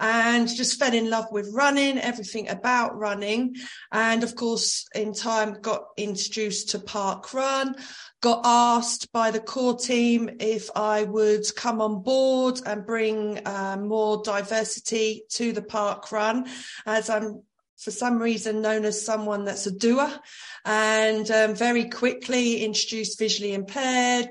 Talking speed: 145 wpm